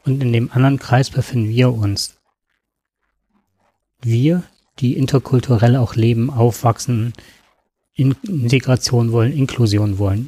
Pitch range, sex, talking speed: 110-135 Hz, male, 105 wpm